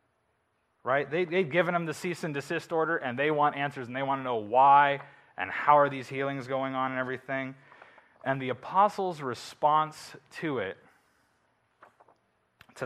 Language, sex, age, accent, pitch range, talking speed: English, male, 20-39, American, 115-145 Hz, 170 wpm